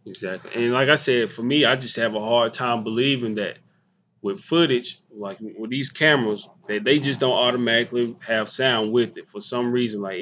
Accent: American